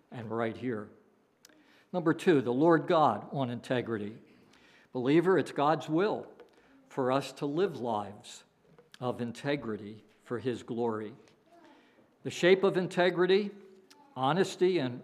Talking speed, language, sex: 120 wpm, English, male